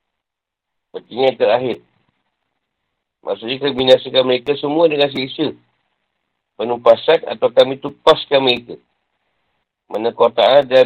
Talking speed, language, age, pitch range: 110 wpm, Malay, 50-69, 120-150 Hz